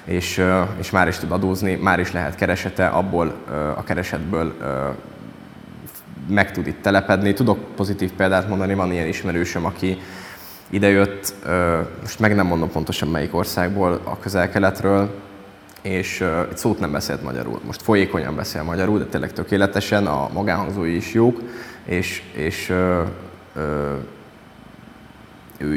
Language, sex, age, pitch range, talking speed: Hungarian, male, 10-29, 85-100 Hz, 140 wpm